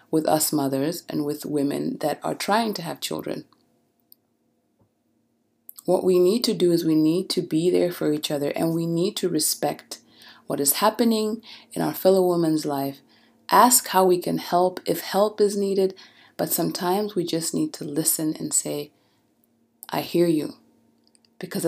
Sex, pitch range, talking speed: female, 145-180 Hz, 170 wpm